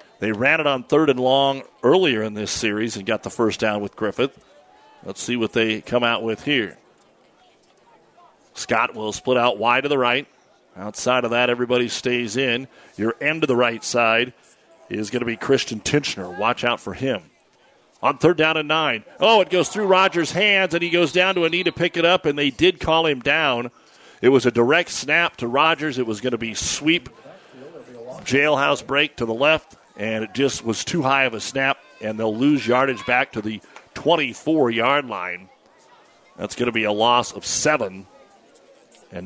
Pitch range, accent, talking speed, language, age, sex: 115-145 Hz, American, 195 wpm, English, 40-59, male